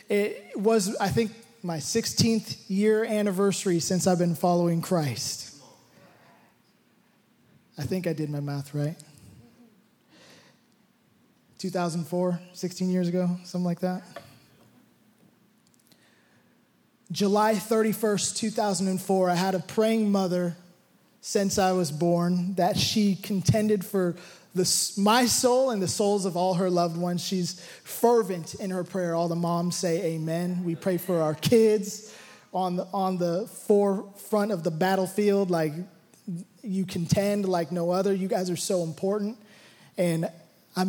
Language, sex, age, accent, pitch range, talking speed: English, male, 20-39, American, 175-205 Hz, 130 wpm